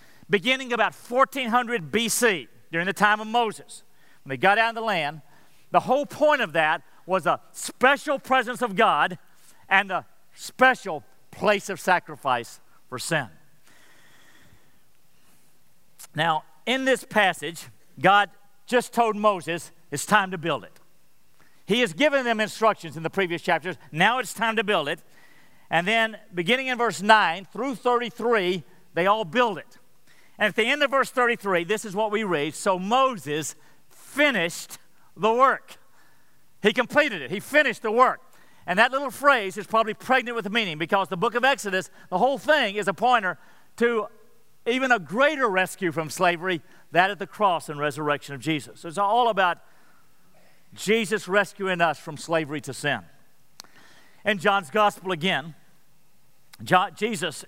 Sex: male